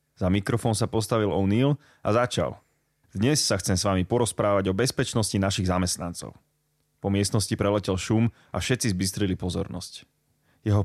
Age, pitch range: 30-49, 100-125 Hz